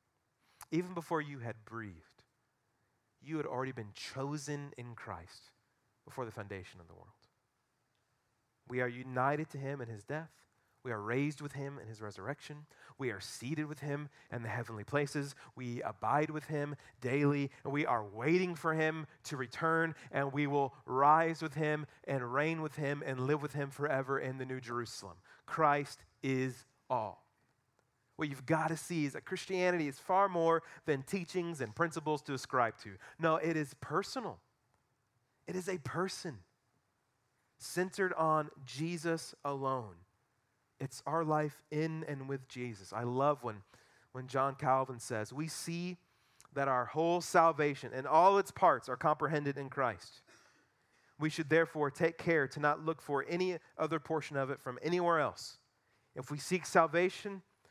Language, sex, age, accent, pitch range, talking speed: English, male, 30-49, American, 125-155 Hz, 165 wpm